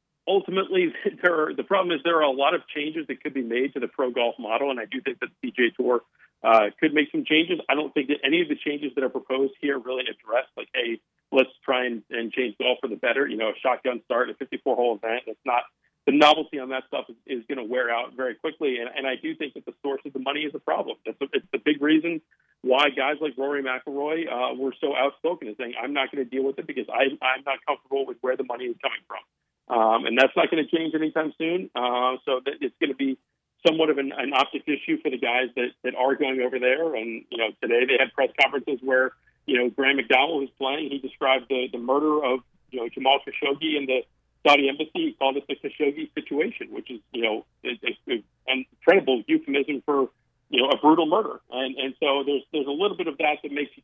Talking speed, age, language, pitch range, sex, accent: 250 wpm, 40-59, English, 130-155 Hz, male, American